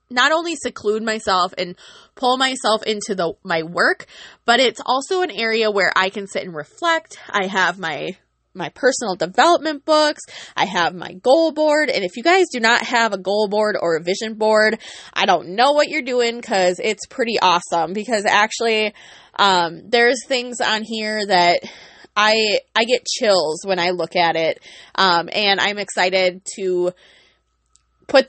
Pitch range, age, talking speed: 185-255 Hz, 20-39, 170 wpm